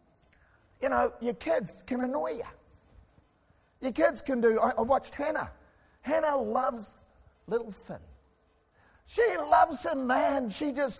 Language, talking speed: English, 135 wpm